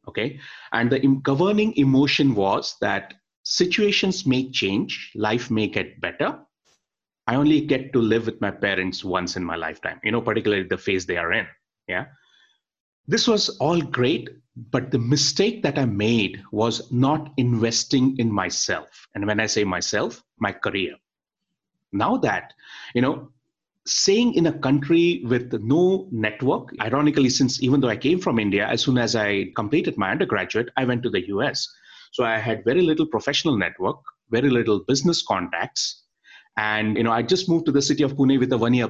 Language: English